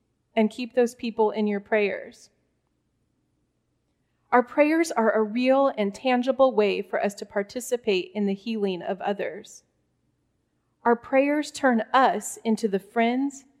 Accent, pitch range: American, 215-260 Hz